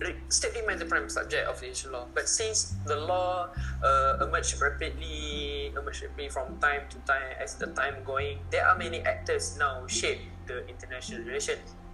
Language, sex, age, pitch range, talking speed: Malay, male, 10-29, 65-110 Hz, 165 wpm